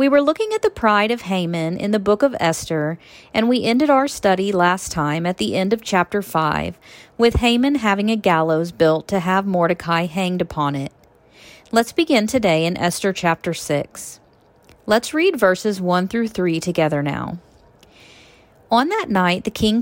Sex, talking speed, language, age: female, 175 wpm, English, 40-59